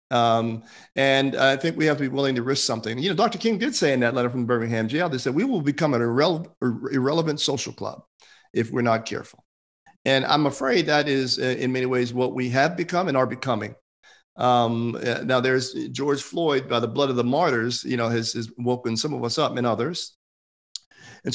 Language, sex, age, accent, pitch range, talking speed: English, male, 40-59, American, 115-135 Hz, 215 wpm